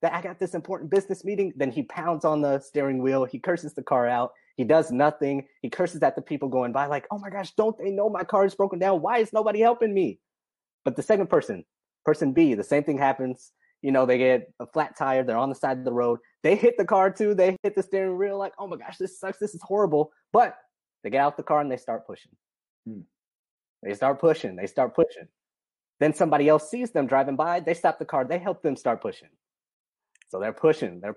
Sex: male